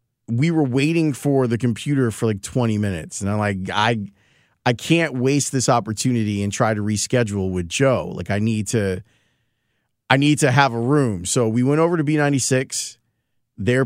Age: 30-49